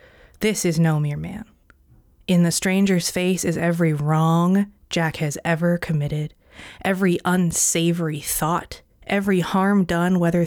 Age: 20-39